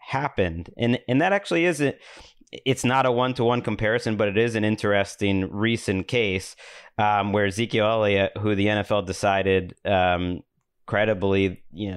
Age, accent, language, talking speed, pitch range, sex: 30-49, American, English, 160 wpm, 95-115 Hz, male